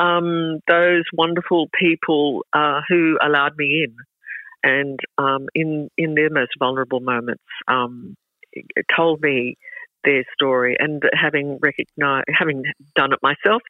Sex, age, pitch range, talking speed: female, 60-79, 140-170 Hz, 125 wpm